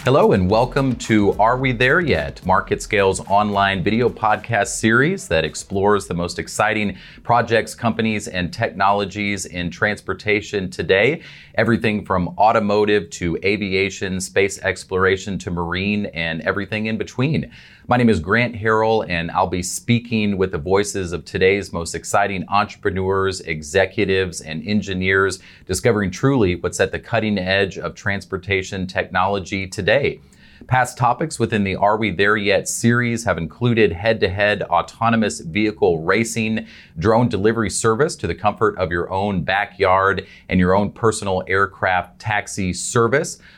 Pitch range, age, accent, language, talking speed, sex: 95-110 Hz, 30-49, American, English, 140 wpm, male